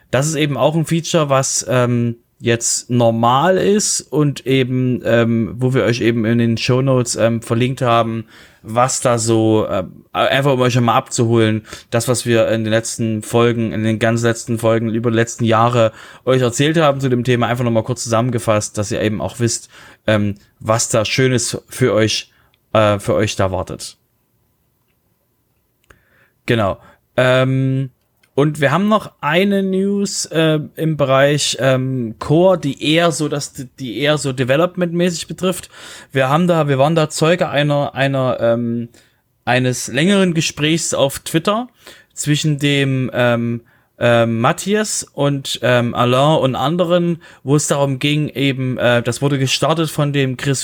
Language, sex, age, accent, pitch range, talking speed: German, male, 30-49, German, 120-150 Hz, 160 wpm